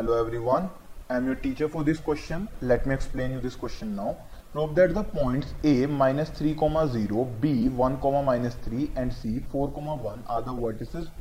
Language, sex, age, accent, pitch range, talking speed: Hindi, male, 20-39, native, 125-160 Hz, 150 wpm